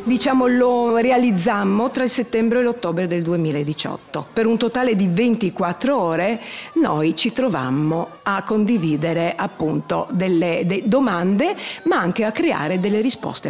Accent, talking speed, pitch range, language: native, 140 wpm, 180-245 Hz, Italian